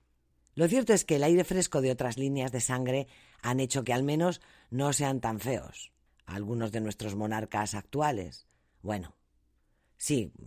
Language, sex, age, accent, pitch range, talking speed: Spanish, female, 40-59, Spanish, 105-160 Hz, 160 wpm